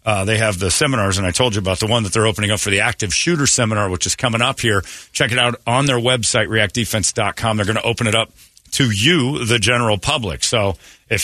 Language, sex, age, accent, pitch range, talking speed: English, male, 40-59, American, 95-125 Hz, 245 wpm